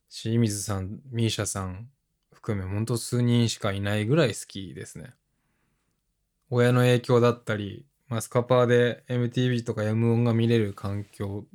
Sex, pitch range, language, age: male, 105-130 Hz, Japanese, 20-39